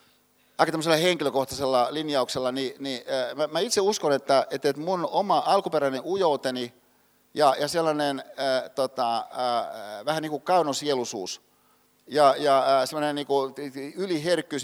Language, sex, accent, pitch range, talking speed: Finnish, male, native, 130-155 Hz, 105 wpm